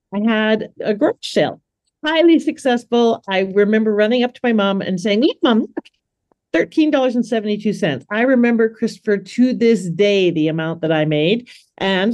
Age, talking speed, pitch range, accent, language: 50-69, 160 wpm, 160-215 Hz, American, English